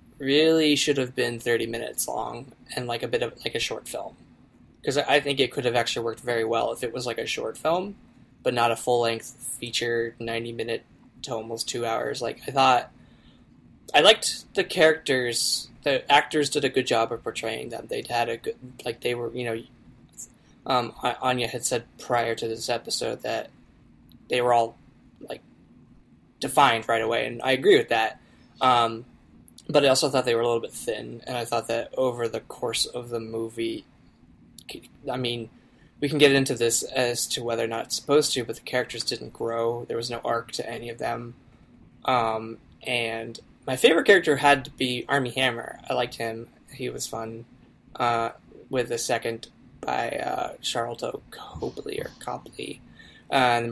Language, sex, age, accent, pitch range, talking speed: English, male, 10-29, American, 115-130 Hz, 185 wpm